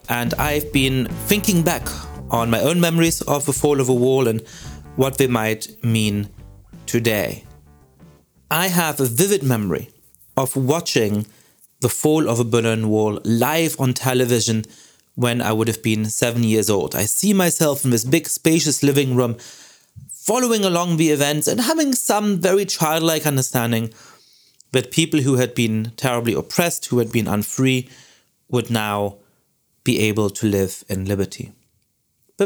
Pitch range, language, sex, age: 115-155 Hz, English, male, 30-49